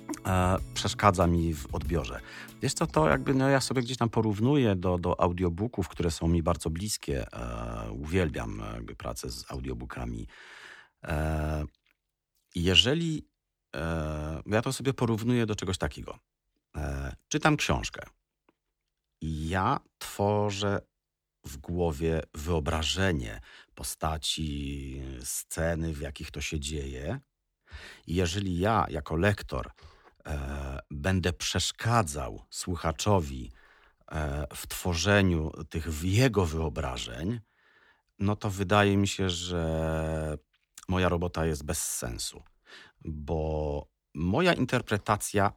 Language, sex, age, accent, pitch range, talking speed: Polish, male, 50-69, native, 75-100 Hz, 110 wpm